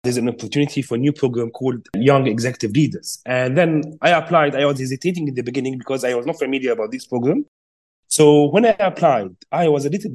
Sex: male